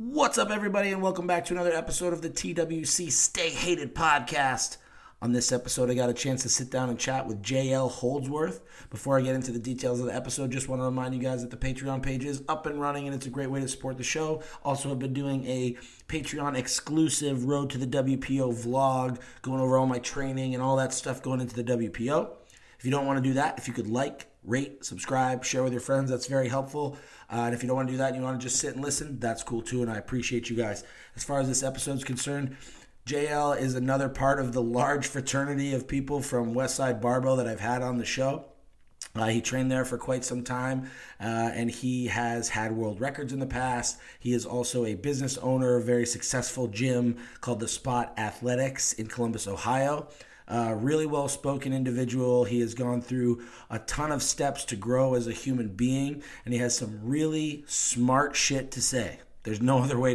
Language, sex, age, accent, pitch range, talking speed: English, male, 30-49, American, 120-140 Hz, 220 wpm